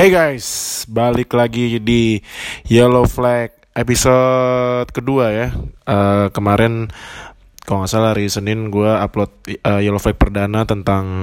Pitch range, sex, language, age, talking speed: 115-140 Hz, male, Indonesian, 20-39, 130 wpm